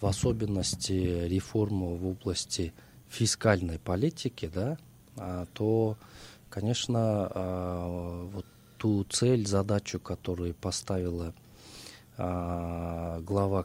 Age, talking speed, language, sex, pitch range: 20-39, 75 wpm, Russian, male, 90-115 Hz